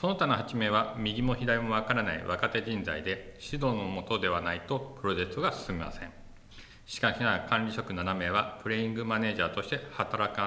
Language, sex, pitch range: Japanese, male, 95-115 Hz